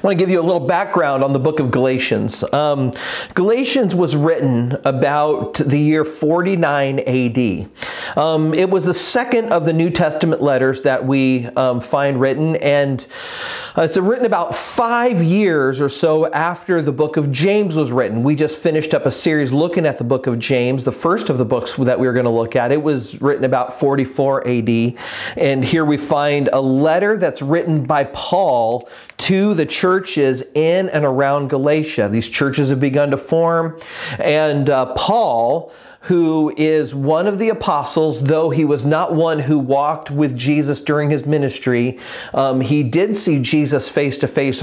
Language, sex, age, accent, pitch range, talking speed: English, male, 40-59, American, 135-165 Hz, 180 wpm